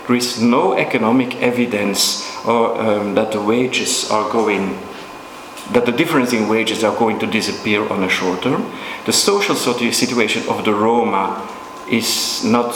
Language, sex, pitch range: English, male, 105-135 Hz